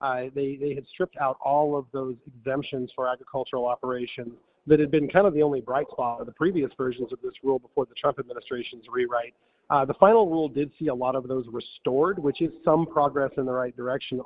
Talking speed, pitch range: 225 wpm, 125-155 Hz